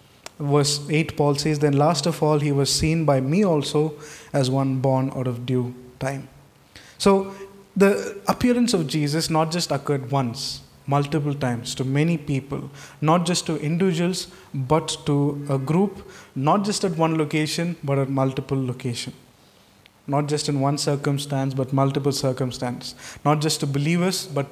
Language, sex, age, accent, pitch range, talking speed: English, male, 20-39, Indian, 140-180 Hz, 160 wpm